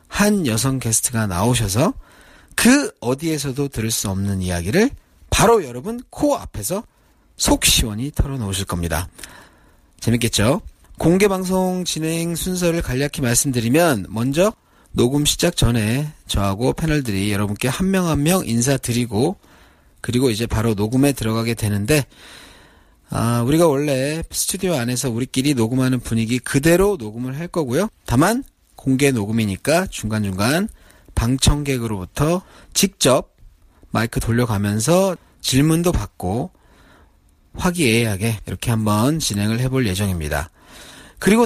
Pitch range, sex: 110-155 Hz, male